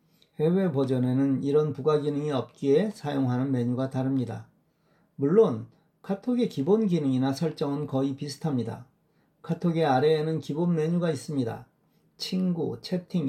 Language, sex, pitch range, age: Korean, male, 140-195 Hz, 40-59